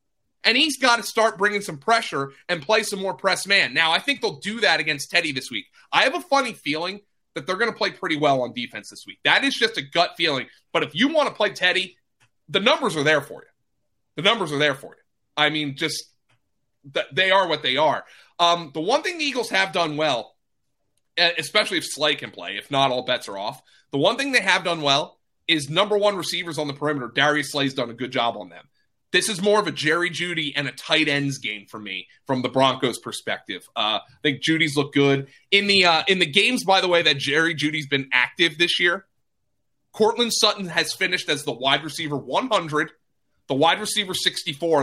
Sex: male